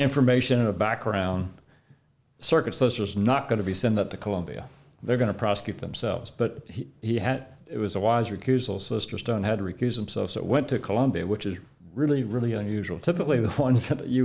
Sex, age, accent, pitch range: male, 40-59, American, 105-125 Hz